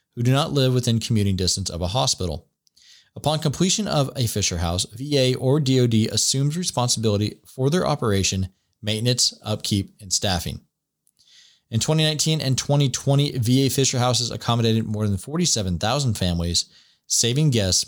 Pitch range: 90-125 Hz